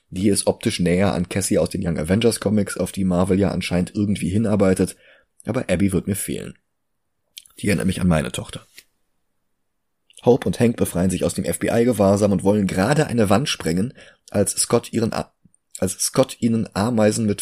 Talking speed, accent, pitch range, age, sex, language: 170 wpm, German, 90-105 Hz, 30-49, male, German